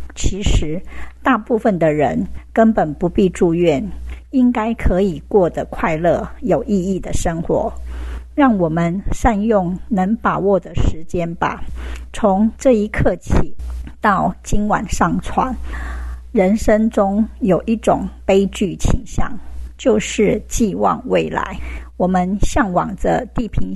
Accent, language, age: American, Chinese, 50-69